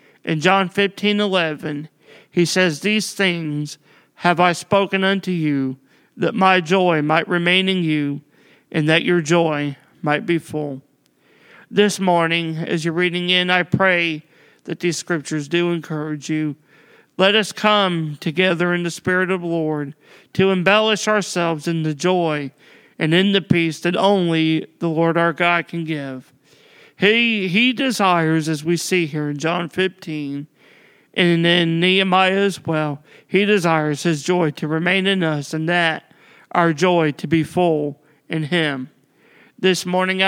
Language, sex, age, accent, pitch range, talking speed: English, male, 40-59, American, 155-185 Hz, 150 wpm